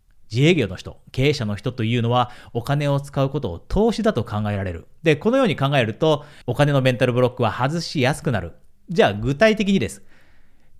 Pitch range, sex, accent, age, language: 115-170 Hz, male, native, 40-59, Japanese